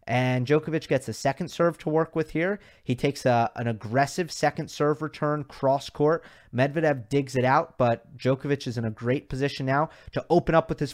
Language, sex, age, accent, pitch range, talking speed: English, male, 30-49, American, 125-155 Hz, 195 wpm